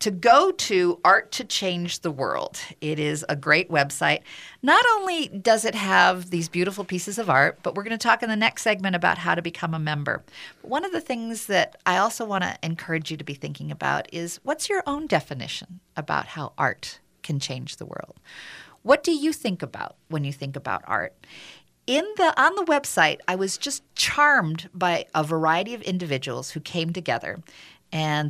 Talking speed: 200 wpm